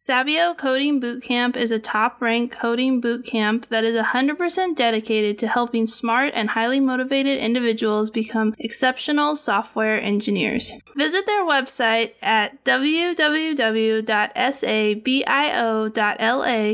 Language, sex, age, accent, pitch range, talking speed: English, female, 20-39, American, 225-275 Hz, 100 wpm